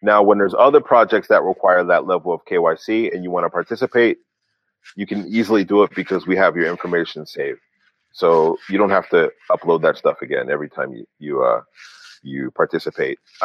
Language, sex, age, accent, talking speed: English, male, 30-49, American, 190 wpm